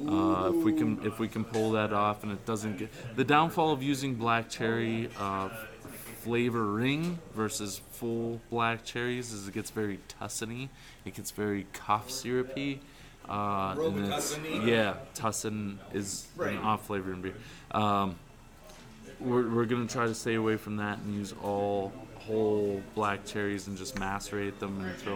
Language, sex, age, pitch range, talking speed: English, male, 20-39, 105-135 Hz, 160 wpm